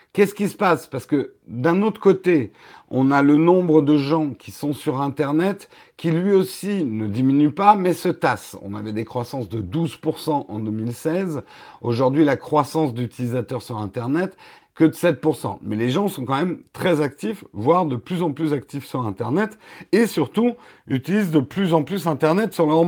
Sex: male